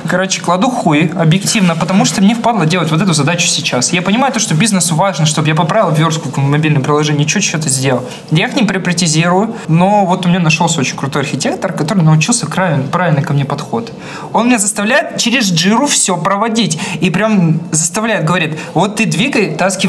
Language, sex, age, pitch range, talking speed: Russian, male, 20-39, 145-185 Hz, 185 wpm